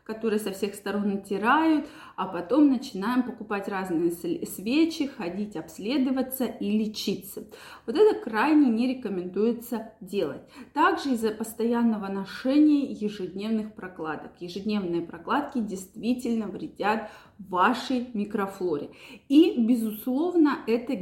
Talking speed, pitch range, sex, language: 105 wpm, 215-285 Hz, female, Russian